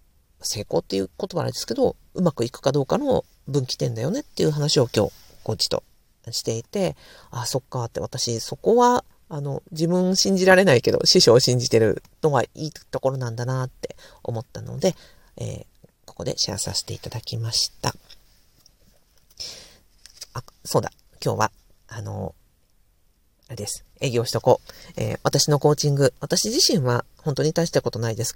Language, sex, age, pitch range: Japanese, female, 50-69, 120-170 Hz